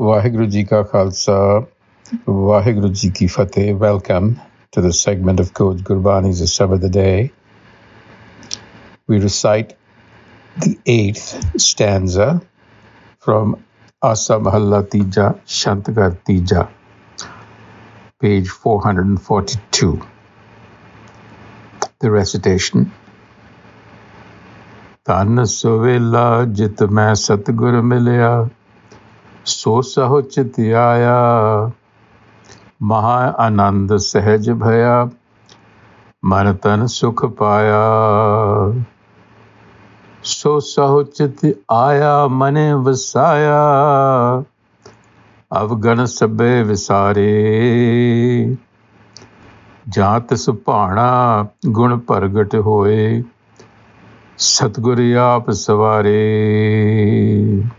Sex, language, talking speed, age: male, English, 60 wpm, 60-79